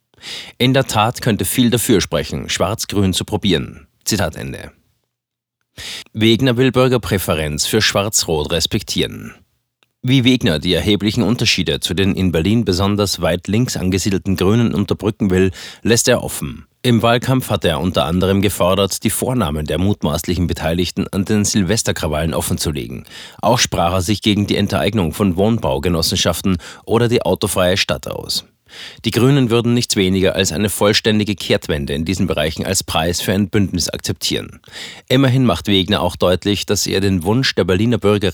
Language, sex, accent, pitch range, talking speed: German, male, German, 90-115 Hz, 150 wpm